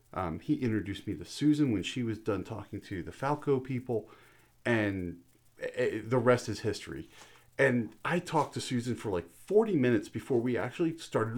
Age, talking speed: 40-59, 180 wpm